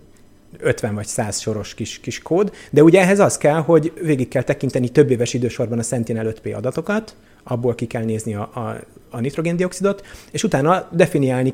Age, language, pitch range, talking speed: 30-49, Hungarian, 110-135 Hz, 175 wpm